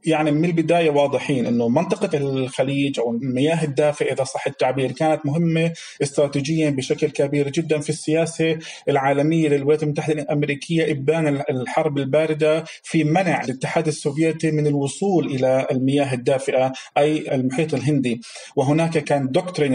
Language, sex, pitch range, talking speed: Arabic, male, 140-165 Hz, 130 wpm